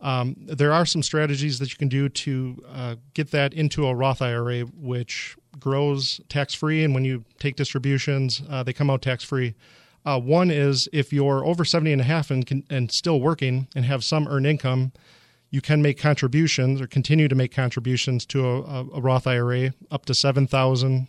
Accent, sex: American, male